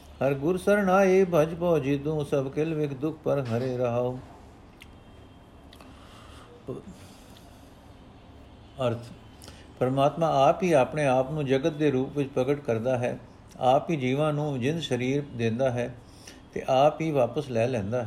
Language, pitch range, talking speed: Punjabi, 120-150 Hz, 135 wpm